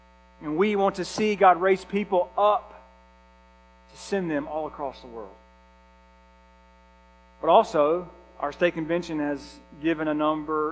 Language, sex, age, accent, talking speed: English, male, 40-59, American, 140 wpm